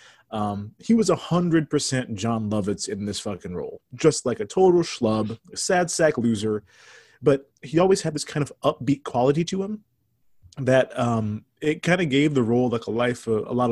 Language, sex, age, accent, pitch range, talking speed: English, male, 30-49, American, 115-145 Hz, 200 wpm